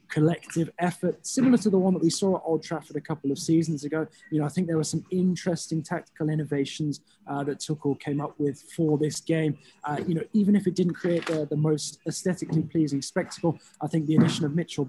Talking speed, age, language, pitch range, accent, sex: 225 wpm, 20-39, English, 140-165 Hz, British, male